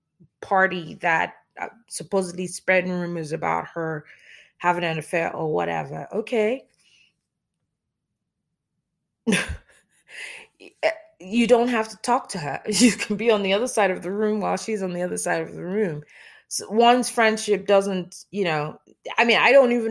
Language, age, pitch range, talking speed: English, 20-39, 180-225 Hz, 150 wpm